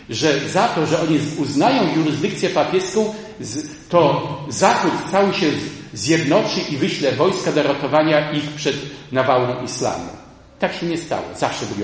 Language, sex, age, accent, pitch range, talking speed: Polish, male, 40-59, native, 125-155 Hz, 140 wpm